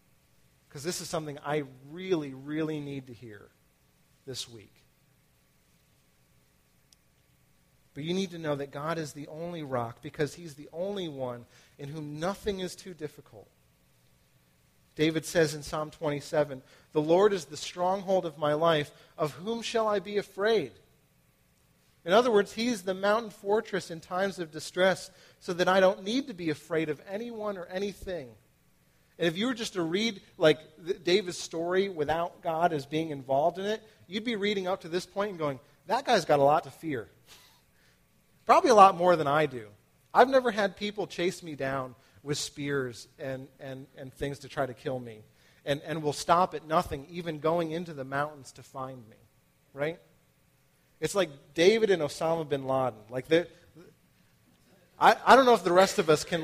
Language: English